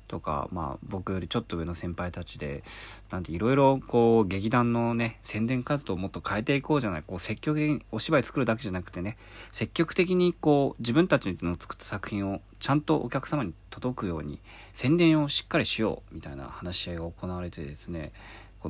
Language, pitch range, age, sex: Japanese, 90-135 Hz, 40-59, male